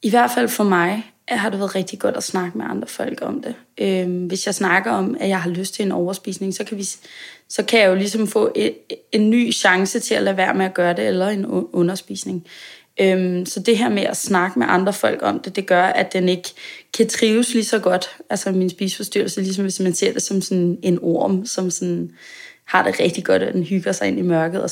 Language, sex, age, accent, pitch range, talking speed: Danish, female, 20-39, native, 185-220 Hz, 250 wpm